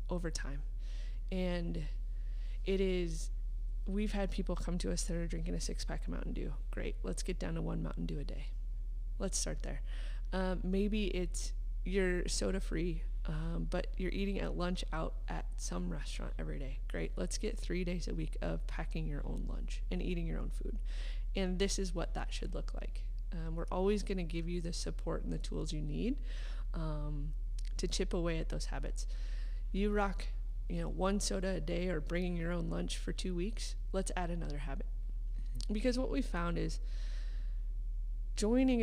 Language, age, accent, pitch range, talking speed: English, 20-39, American, 120-185 Hz, 190 wpm